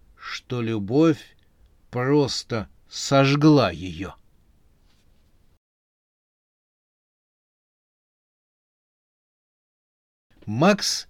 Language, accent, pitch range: Russian, native, 105-150 Hz